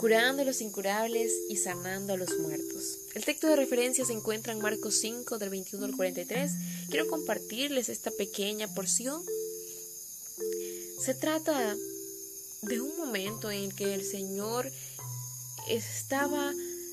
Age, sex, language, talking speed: 10-29, female, Spanish, 130 wpm